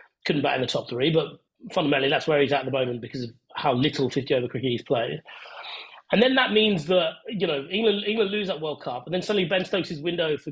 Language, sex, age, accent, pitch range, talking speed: English, male, 30-49, British, 140-180 Hz, 255 wpm